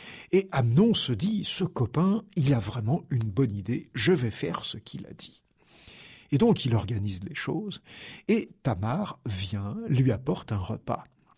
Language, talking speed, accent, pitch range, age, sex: French, 180 wpm, French, 120-180 Hz, 60-79, male